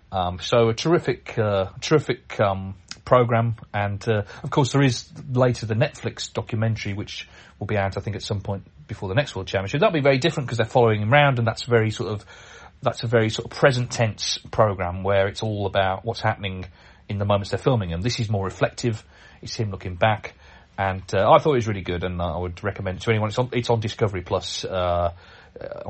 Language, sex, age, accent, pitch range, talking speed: English, male, 30-49, British, 95-125 Hz, 220 wpm